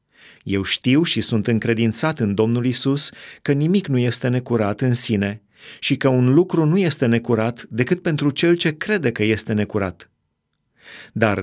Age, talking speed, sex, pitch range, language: 30-49, 165 wpm, male, 110-140 Hz, Romanian